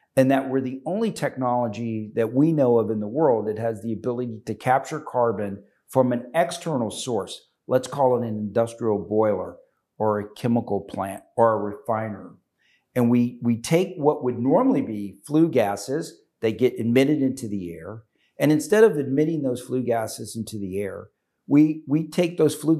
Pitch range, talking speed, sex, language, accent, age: 110-135 Hz, 180 wpm, male, English, American, 50-69